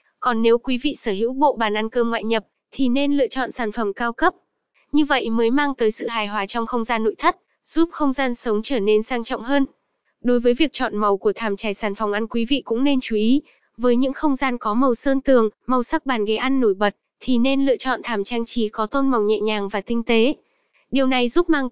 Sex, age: female, 10-29